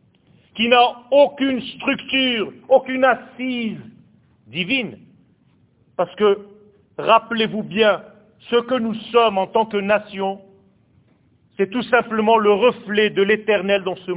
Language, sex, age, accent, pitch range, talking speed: French, male, 50-69, French, 205-265 Hz, 120 wpm